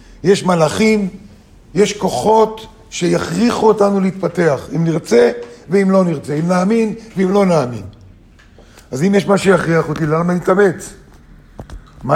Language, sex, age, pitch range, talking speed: Hebrew, male, 50-69, 140-195 Hz, 130 wpm